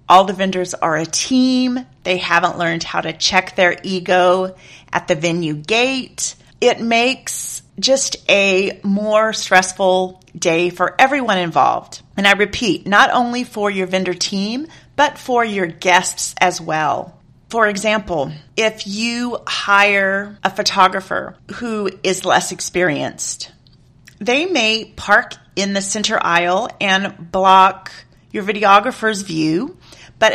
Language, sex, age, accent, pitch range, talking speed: English, female, 40-59, American, 180-225 Hz, 130 wpm